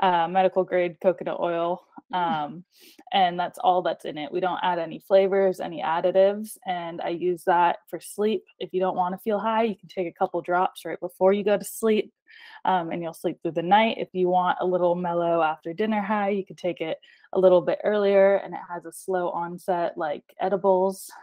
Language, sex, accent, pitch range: English, female, American, 175-200 Hz